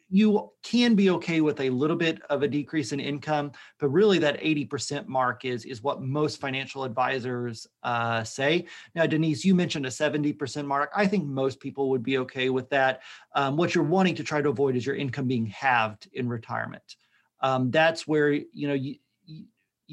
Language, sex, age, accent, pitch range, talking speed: English, male, 40-59, American, 125-155 Hz, 190 wpm